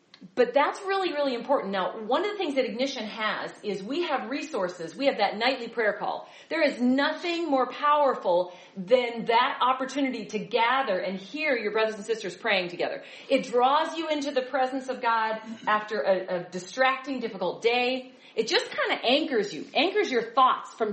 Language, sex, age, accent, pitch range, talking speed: English, female, 40-59, American, 195-275 Hz, 185 wpm